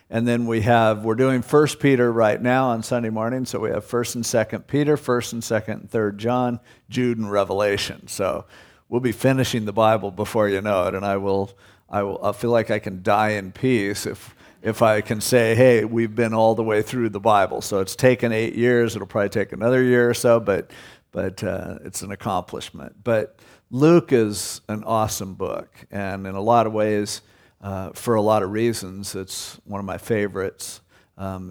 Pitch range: 100-120 Hz